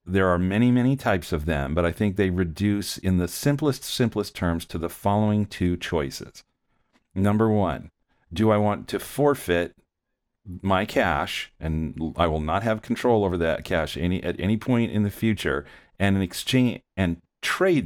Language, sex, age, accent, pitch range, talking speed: English, male, 40-59, American, 90-110 Hz, 165 wpm